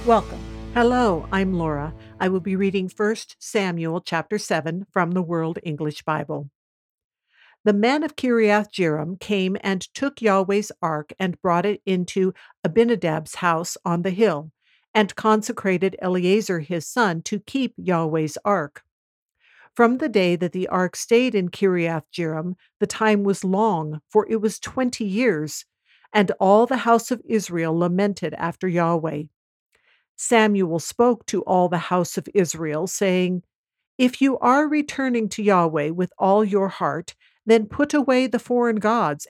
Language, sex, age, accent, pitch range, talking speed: English, female, 60-79, American, 170-220 Hz, 145 wpm